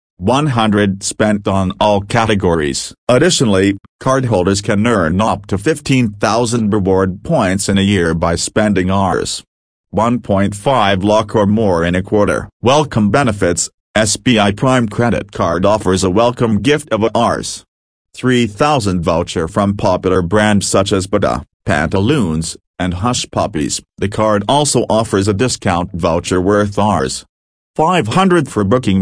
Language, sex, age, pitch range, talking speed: English, male, 40-59, 95-120 Hz, 130 wpm